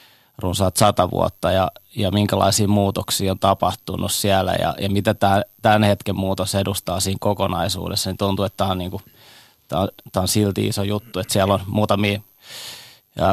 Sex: male